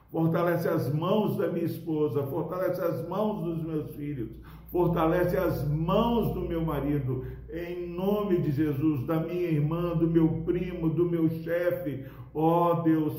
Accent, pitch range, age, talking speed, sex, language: Brazilian, 135-165 Hz, 60-79, 150 wpm, male, Portuguese